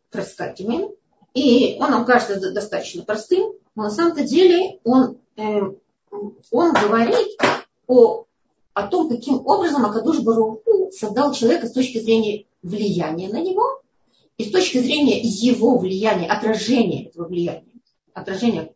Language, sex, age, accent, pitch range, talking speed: Russian, female, 30-49, native, 205-295 Hz, 130 wpm